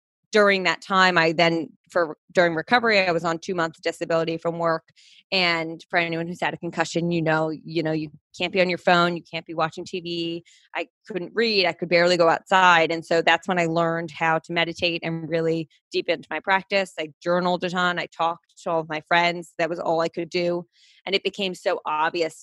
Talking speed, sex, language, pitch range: 220 wpm, female, English, 165-180 Hz